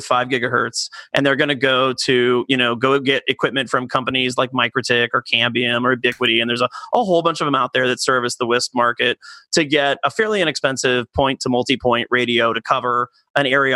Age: 30-49